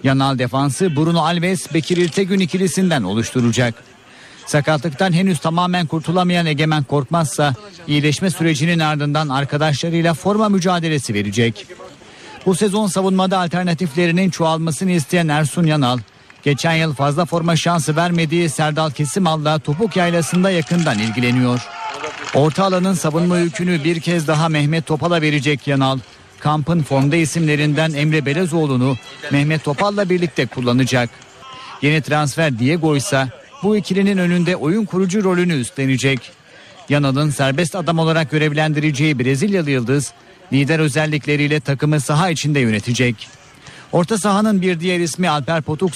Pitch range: 140-175 Hz